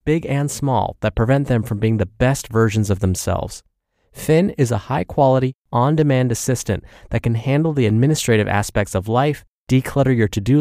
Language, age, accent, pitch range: English, 30-49, American, 105-135 Hz